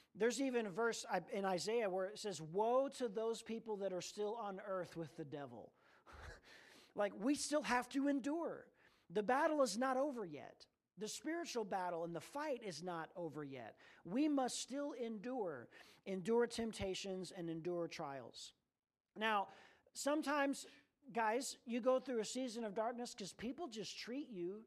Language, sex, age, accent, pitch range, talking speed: English, male, 40-59, American, 195-255 Hz, 165 wpm